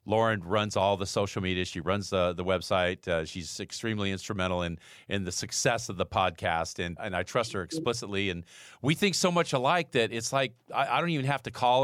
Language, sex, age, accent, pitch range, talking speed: English, male, 40-59, American, 100-140 Hz, 240 wpm